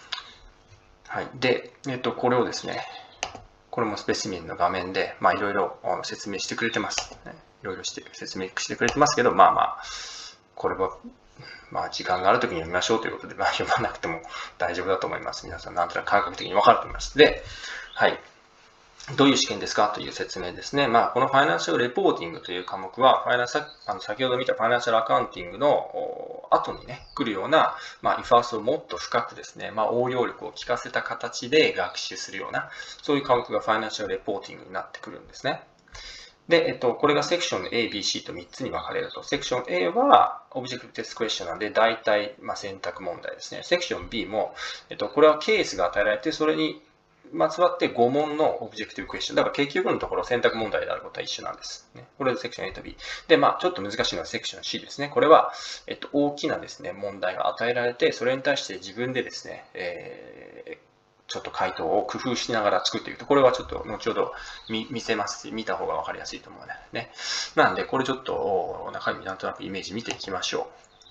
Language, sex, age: Japanese, male, 20-39